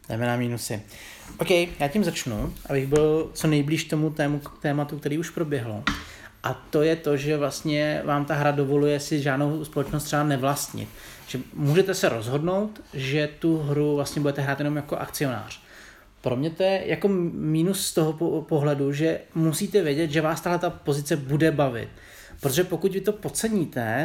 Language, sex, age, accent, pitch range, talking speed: Czech, male, 30-49, native, 140-165 Hz, 170 wpm